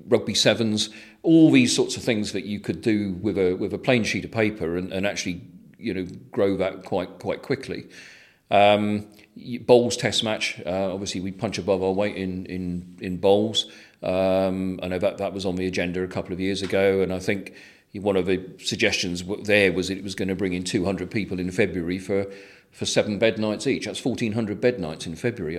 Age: 40-59